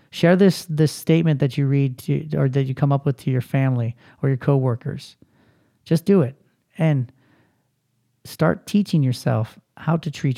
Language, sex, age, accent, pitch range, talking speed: English, male, 30-49, American, 135-165 Hz, 175 wpm